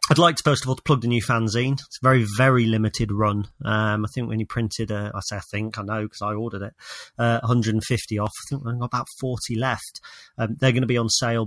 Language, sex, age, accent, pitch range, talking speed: English, male, 30-49, British, 110-125 Hz, 265 wpm